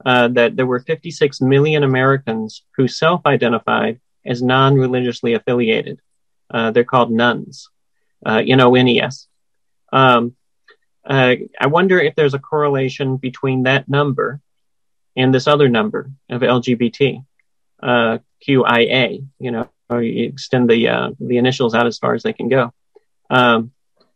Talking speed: 155 wpm